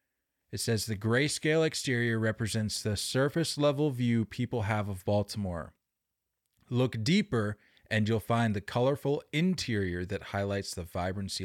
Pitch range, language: 110-135 Hz, English